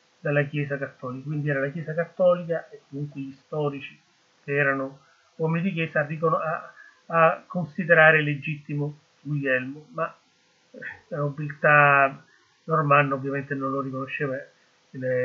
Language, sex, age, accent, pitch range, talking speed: Italian, male, 30-49, native, 145-185 Hz, 120 wpm